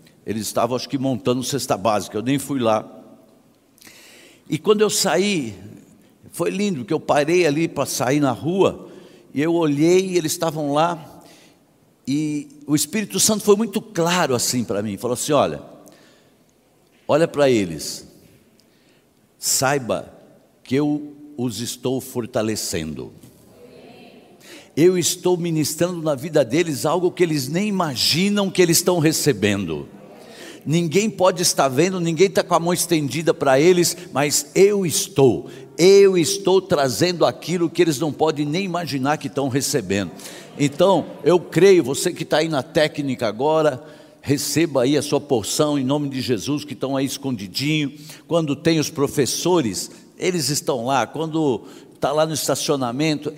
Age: 60-79